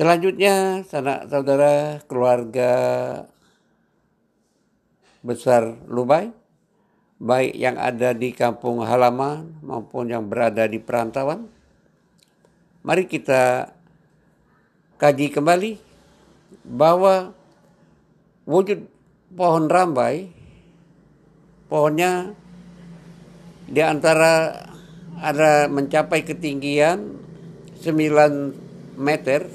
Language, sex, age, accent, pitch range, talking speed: Indonesian, male, 50-69, native, 130-175 Hz, 65 wpm